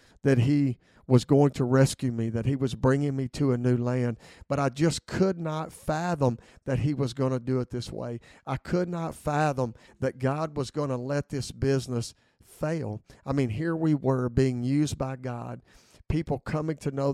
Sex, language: male, English